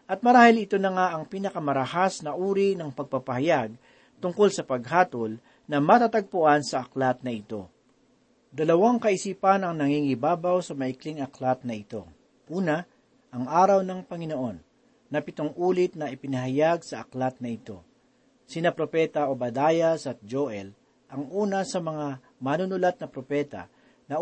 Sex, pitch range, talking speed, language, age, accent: male, 135-185 Hz, 135 wpm, Filipino, 40-59, native